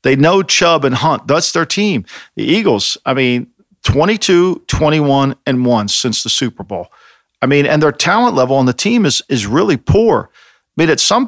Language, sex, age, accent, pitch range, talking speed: English, male, 50-69, American, 130-180 Hz, 195 wpm